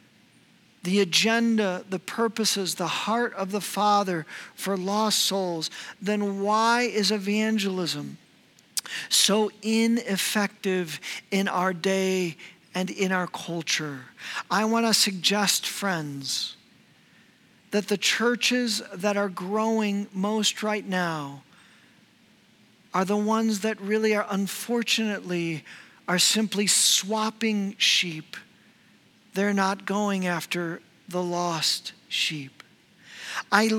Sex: male